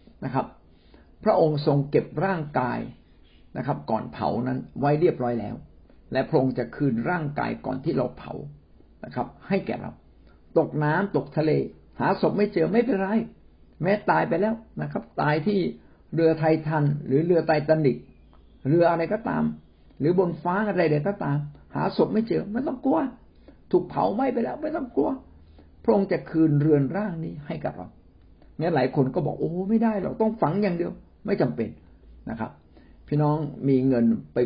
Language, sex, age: Thai, male, 60-79